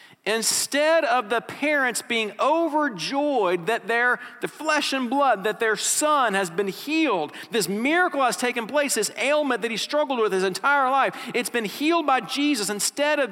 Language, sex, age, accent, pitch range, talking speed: English, male, 50-69, American, 175-275 Hz, 175 wpm